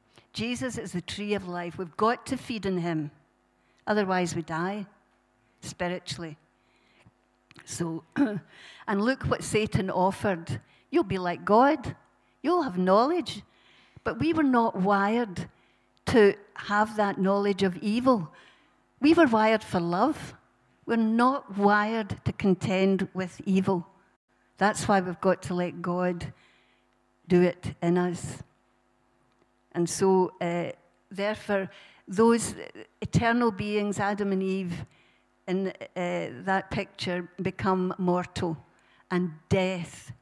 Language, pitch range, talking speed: English, 170-205 Hz, 120 wpm